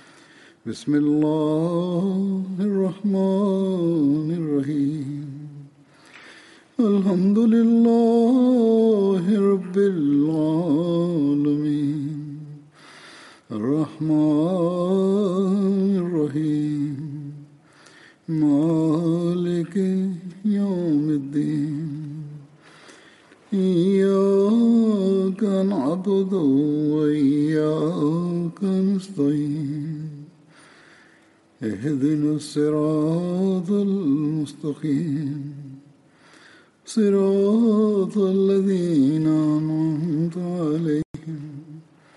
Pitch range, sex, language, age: 150-190 Hz, male, English, 60-79